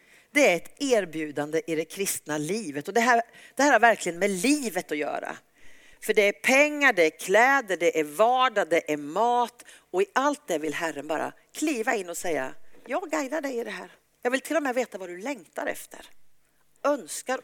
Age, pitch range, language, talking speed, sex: 50-69, 160-255 Hz, Swedish, 205 wpm, female